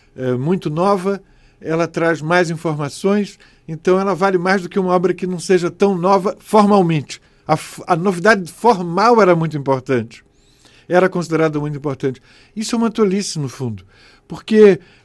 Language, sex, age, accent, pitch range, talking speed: Portuguese, male, 50-69, Brazilian, 160-230 Hz, 150 wpm